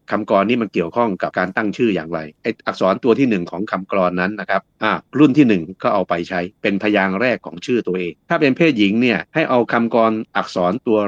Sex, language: male, Thai